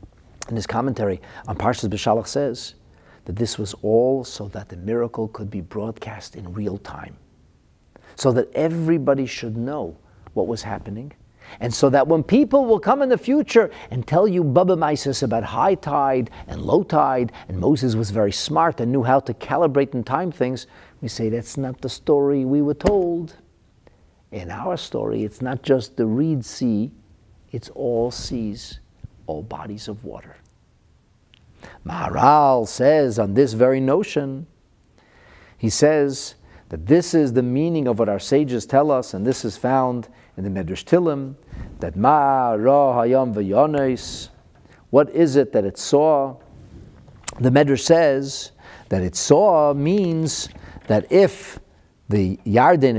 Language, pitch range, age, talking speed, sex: English, 105-145 Hz, 50-69, 150 wpm, male